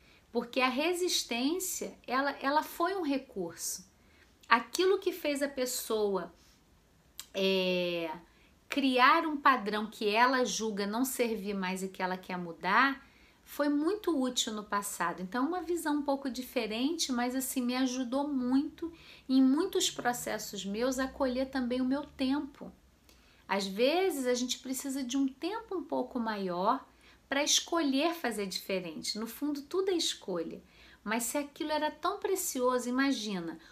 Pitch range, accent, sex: 210-290 Hz, Brazilian, female